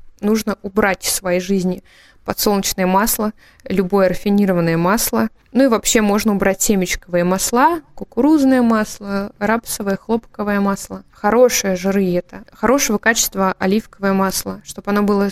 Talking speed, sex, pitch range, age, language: 125 wpm, female, 190-220 Hz, 20-39, Russian